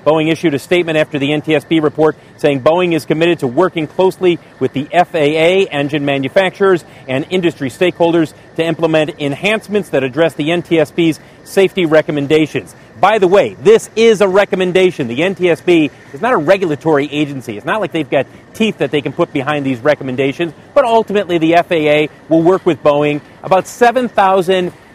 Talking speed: 165 wpm